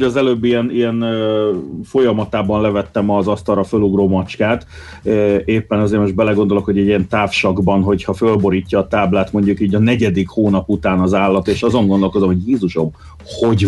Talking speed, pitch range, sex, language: 160 wpm, 100-120 Hz, male, Hungarian